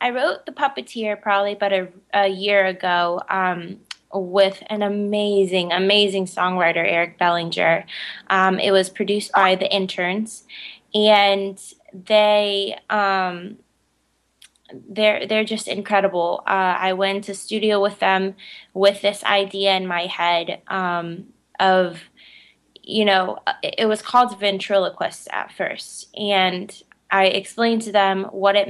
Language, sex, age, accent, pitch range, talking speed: English, female, 20-39, American, 180-205 Hz, 130 wpm